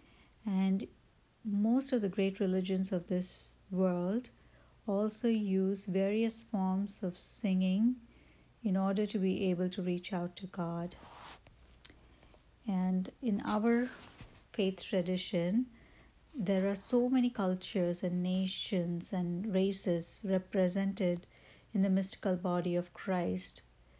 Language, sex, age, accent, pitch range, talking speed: English, female, 60-79, Indian, 180-210 Hz, 115 wpm